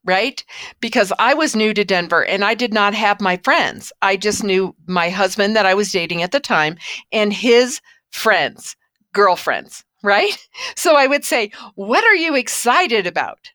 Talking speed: 175 wpm